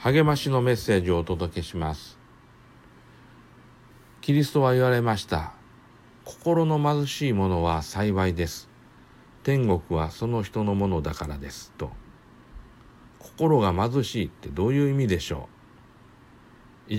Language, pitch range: Japanese, 95-140 Hz